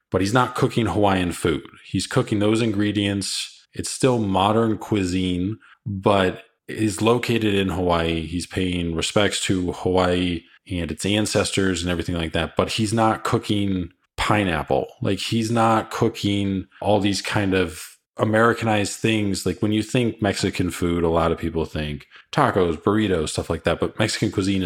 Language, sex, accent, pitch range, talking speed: English, male, American, 85-110 Hz, 160 wpm